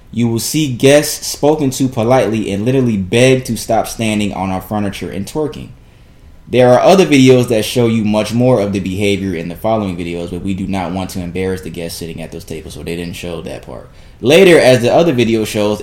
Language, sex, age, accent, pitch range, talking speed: English, male, 20-39, American, 85-125 Hz, 225 wpm